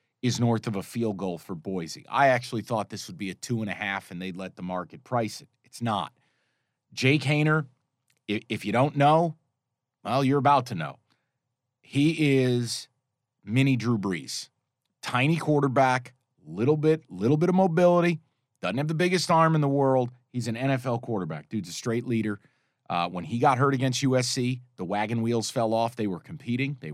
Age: 40-59